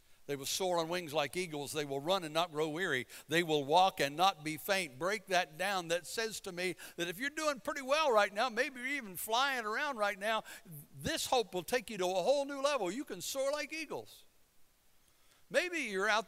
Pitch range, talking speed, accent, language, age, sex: 140-210 Hz, 225 wpm, American, English, 60-79, male